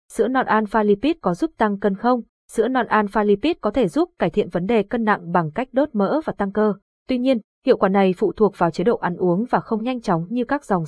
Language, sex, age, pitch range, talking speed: Vietnamese, female, 20-39, 195-245 Hz, 255 wpm